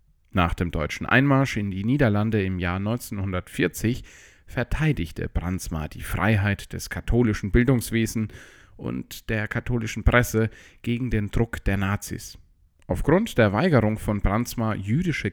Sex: male